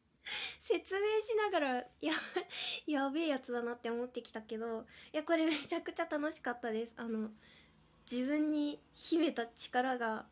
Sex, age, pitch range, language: female, 20-39, 220-290 Hz, Japanese